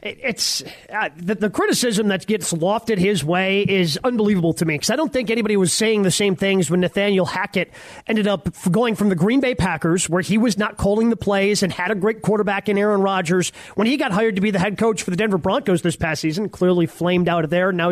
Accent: American